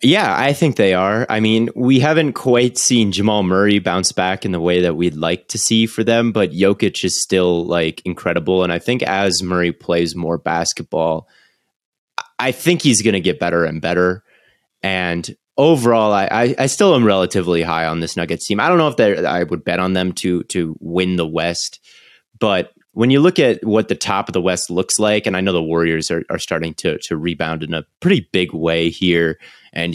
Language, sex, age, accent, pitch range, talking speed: English, male, 30-49, American, 85-110 Hz, 210 wpm